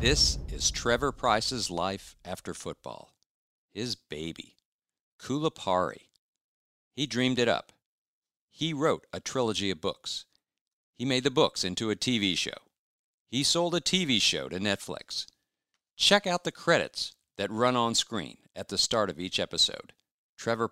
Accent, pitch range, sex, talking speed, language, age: American, 90-140 Hz, male, 145 wpm, English, 50-69